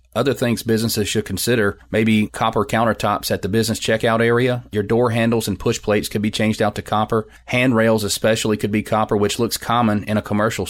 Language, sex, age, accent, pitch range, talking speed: English, male, 30-49, American, 100-115 Hz, 200 wpm